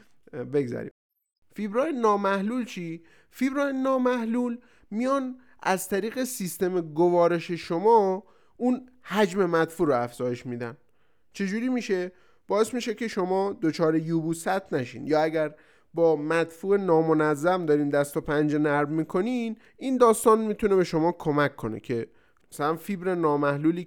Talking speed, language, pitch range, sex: 125 wpm, Persian, 145-210 Hz, male